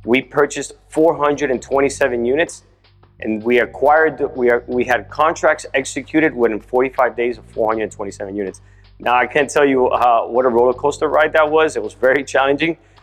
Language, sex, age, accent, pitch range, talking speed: English, male, 30-49, American, 105-130 Hz, 165 wpm